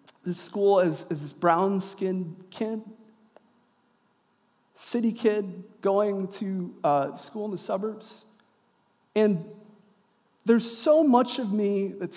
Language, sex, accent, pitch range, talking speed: English, male, American, 175-240 Hz, 115 wpm